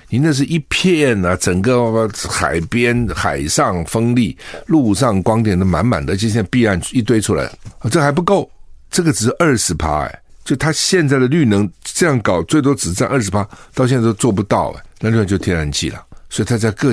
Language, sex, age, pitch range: Chinese, male, 60-79, 90-135 Hz